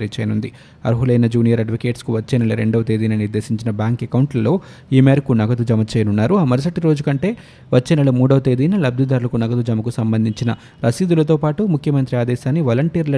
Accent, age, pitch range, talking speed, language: native, 20-39, 115-145 Hz, 130 wpm, Telugu